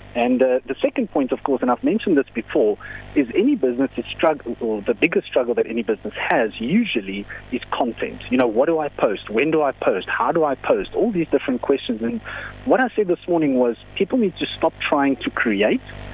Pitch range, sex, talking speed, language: 115-155 Hz, male, 220 wpm, English